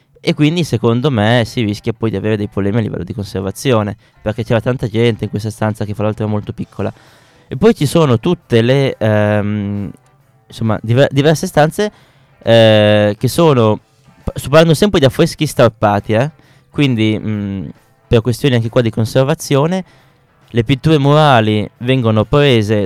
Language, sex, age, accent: Italian, male, 20-39, native